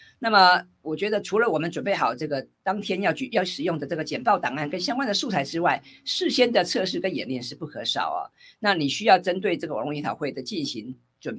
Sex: female